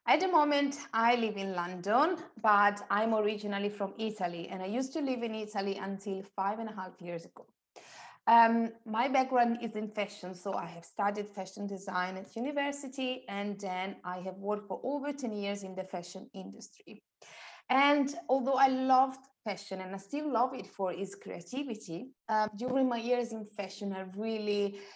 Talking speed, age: 180 wpm, 20-39